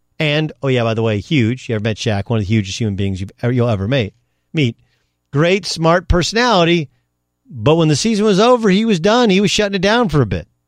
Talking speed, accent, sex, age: 225 wpm, American, male, 40-59